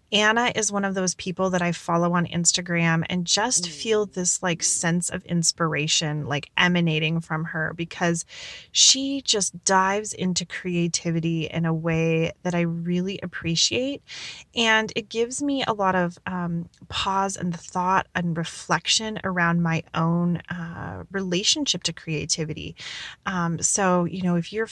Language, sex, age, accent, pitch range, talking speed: English, female, 30-49, American, 165-190 Hz, 150 wpm